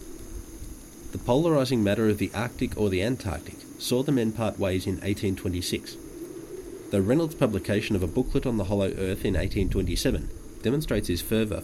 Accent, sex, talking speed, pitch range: Australian, male, 160 wpm, 95-130 Hz